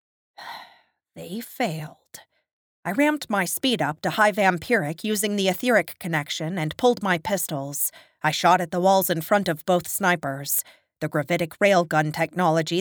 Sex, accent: female, American